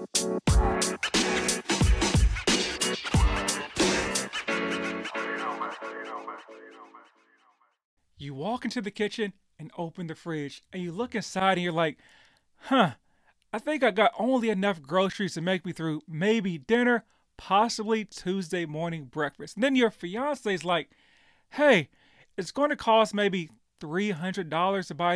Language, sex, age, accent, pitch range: English, male, 30-49, American, 170-225 Hz